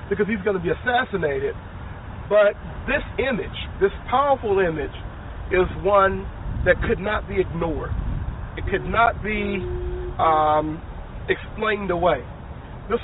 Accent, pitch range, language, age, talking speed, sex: American, 165-220 Hz, English, 40-59, 125 wpm, male